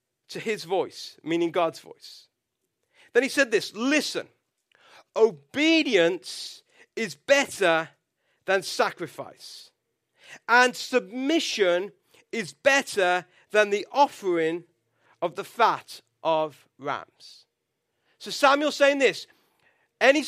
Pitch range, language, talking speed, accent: 205-290 Hz, English, 100 wpm, British